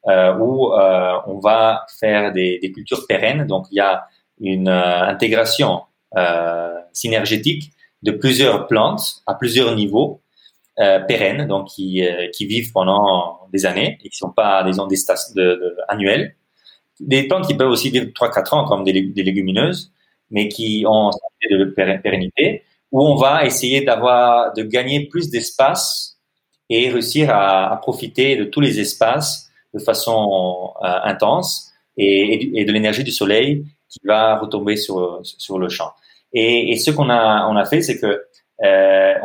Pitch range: 95-130 Hz